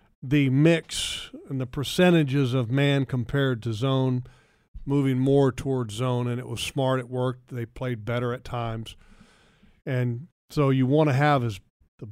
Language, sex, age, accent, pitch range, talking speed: English, male, 40-59, American, 125-160 Hz, 165 wpm